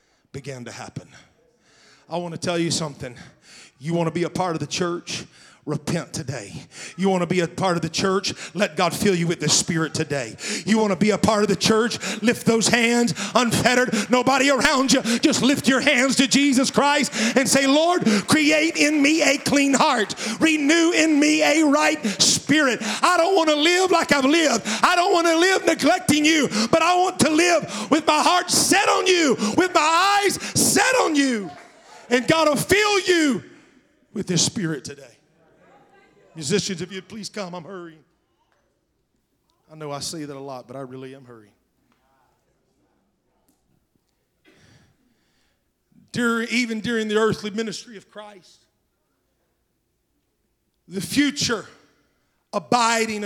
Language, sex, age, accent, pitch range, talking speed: English, male, 40-59, American, 175-280 Hz, 165 wpm